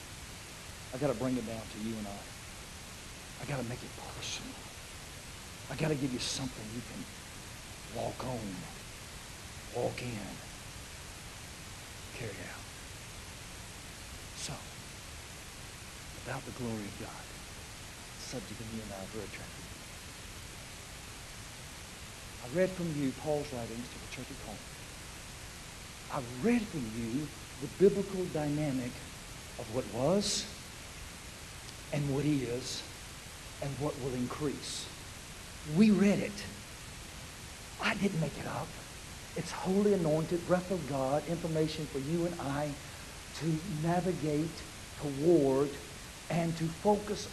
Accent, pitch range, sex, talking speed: American, 110-170 Hz, male, 120 wpm